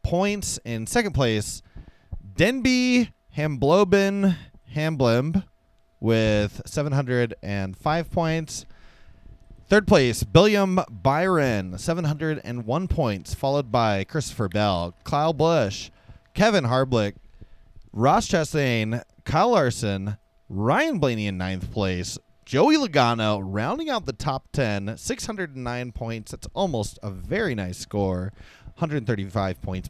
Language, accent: English, American